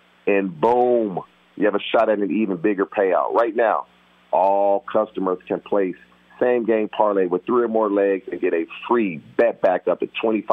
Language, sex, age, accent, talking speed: English, male, 40-59, American, 180 wpm